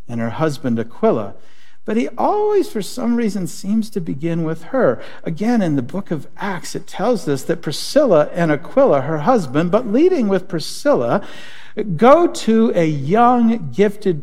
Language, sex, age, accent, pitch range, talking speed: English, male, 50-69, American, 160-225 Hz, 165 wpm